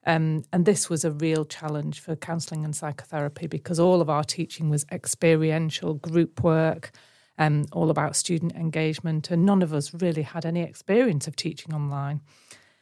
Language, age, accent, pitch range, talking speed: English, 40-59, British, 155-175 Hz, 170 wpm